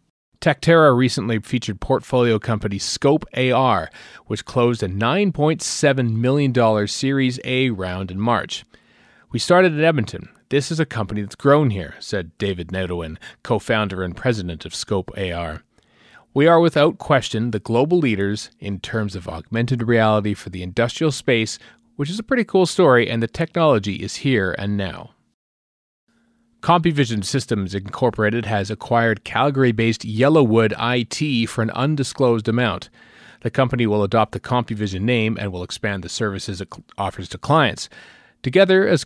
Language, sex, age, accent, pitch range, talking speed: English, male, 40-59, American, 105-145 Hz, 145 wpm